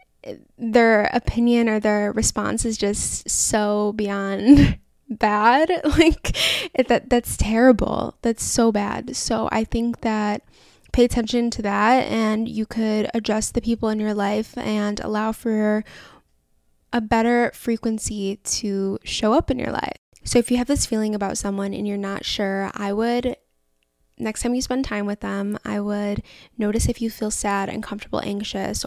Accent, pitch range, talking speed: American, 210-240 Hz, 160 wpm